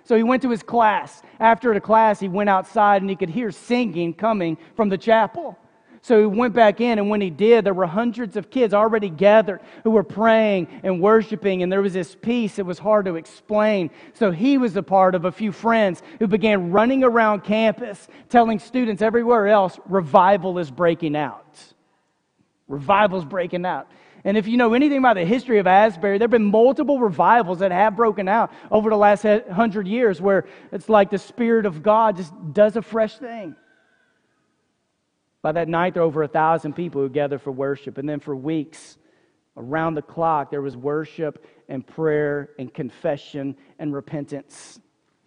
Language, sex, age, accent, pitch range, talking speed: English, male, 30-49, American, 165-225 Hz, 190 wpm